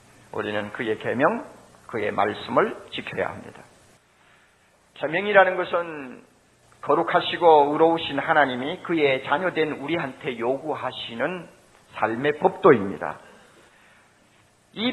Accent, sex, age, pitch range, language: native, male, 40-59, 140-205 Hz, Korean